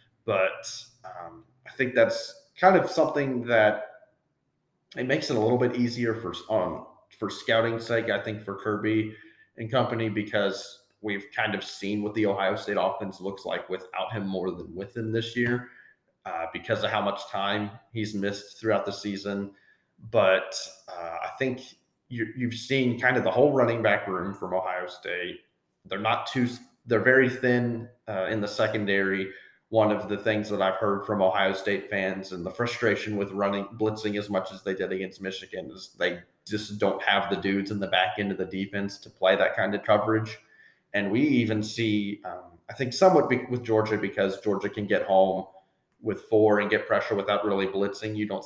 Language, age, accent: English, 30-49, American